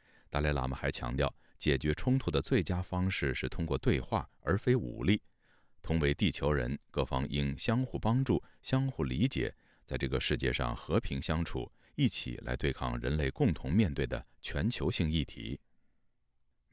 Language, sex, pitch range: Chinese, male, 70-95 Hz